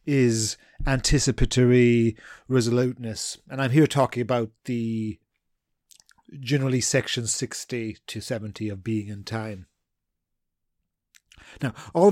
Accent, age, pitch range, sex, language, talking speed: British, 40-59, 120-140 Hz, male, English, 100 wpm